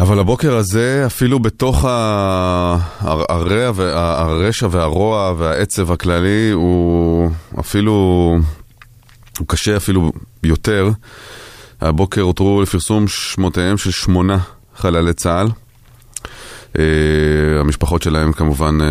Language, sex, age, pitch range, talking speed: Hebrew, male, 20-39, 80-105 Hz, 85 wpm